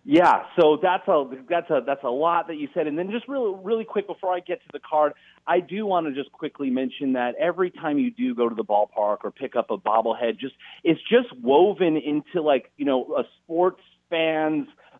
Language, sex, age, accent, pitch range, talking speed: English, male, 40-59, American, 120-170 Hz, 225 wpm